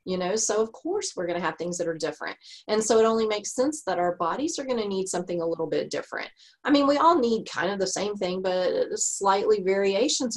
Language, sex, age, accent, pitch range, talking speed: English, female, 30-49, American, 180-260 Hz, 255 wpm